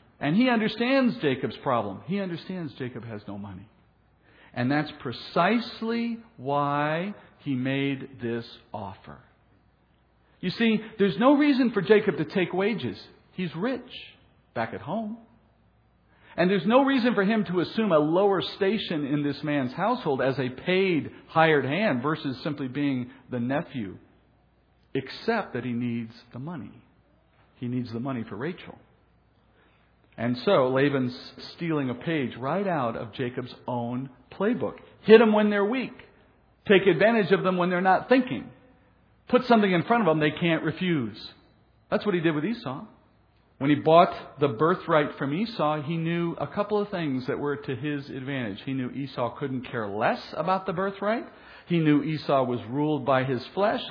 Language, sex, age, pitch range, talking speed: English, male, 50-69, 130-200 Hz, 160 wpm